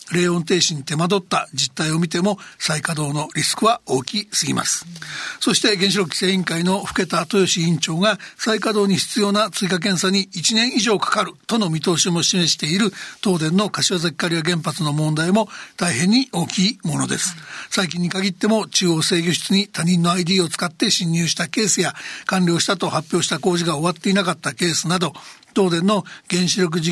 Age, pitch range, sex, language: 60-79, 170-200 Hz, male, Japanese